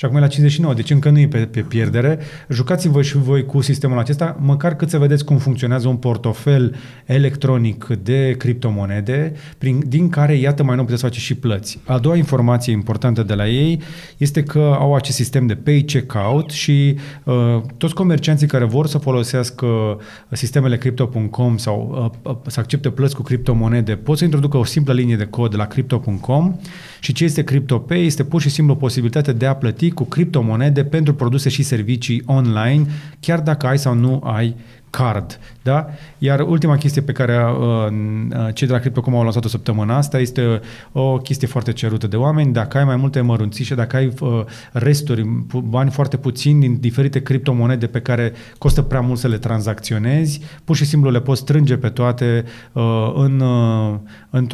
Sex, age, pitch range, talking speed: male, 30-49, 120-145 Hz, 180 wpm